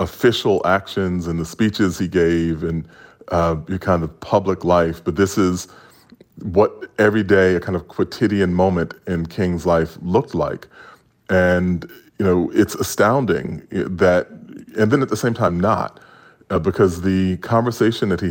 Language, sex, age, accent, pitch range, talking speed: English, female, 30-49, American, 85-100 Hz, 160 wpm